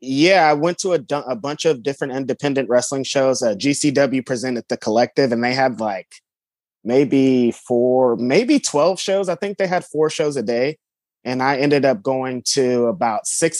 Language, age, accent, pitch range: English, 30-49, American, 120-145 Hz